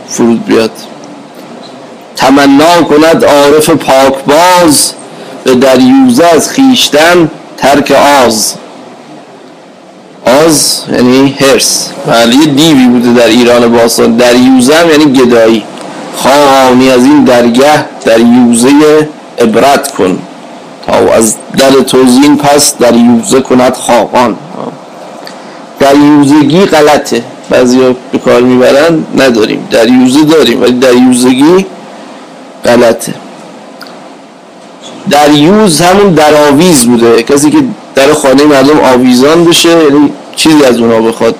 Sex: male